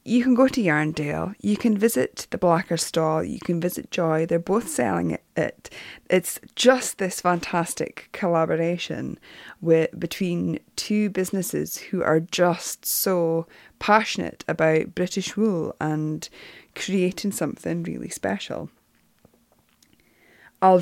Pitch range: 155-195 Hz